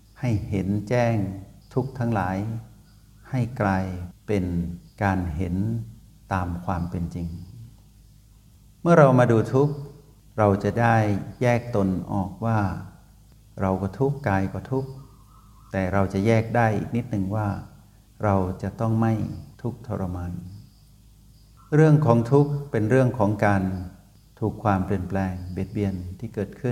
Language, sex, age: Thai, male, 60-79